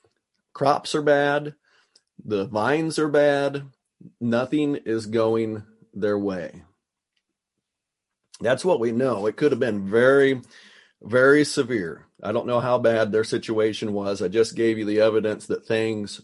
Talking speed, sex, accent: 145 wpm, male, American